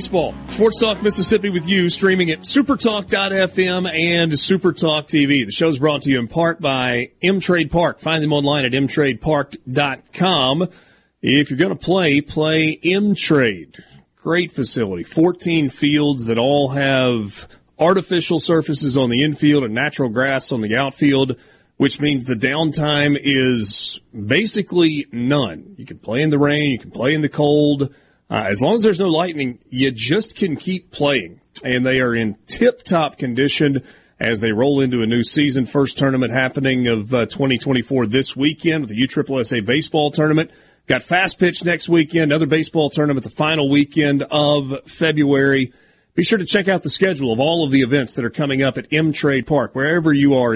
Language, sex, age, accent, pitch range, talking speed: English, male, 30-49, American, 130-170 Hz, 175 wpm